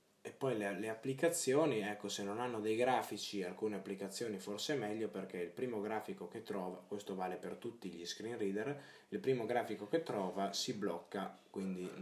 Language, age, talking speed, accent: Italian, 20-39, 175 wpm, native